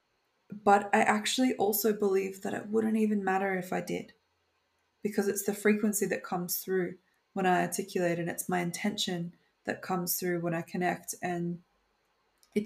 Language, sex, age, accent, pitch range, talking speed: English, female, 20-39, Australian, 180-210 Hz, 165 wpm